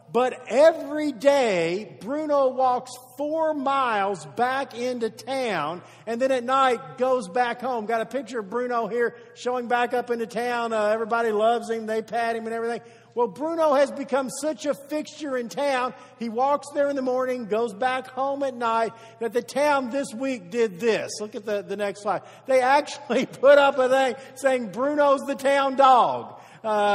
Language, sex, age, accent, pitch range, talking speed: English, male, 50-69, American, 225-275 Hz, 185 wpm